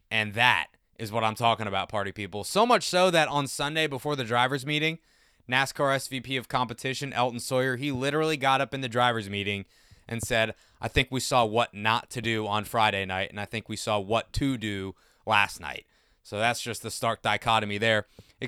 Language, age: English, 20-39